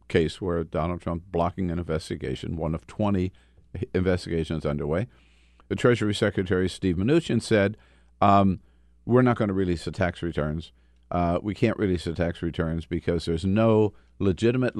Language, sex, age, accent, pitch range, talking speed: English, male, 50-69, American, 70-110 Hz, 155 wpm